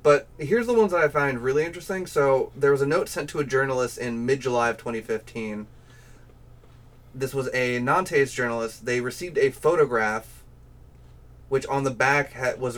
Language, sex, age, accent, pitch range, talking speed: English, male, 30-49, American, 120-150 Hz, 170 wpm